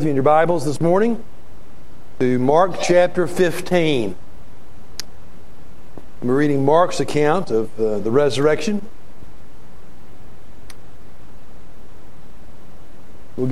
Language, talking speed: English, 85 wpm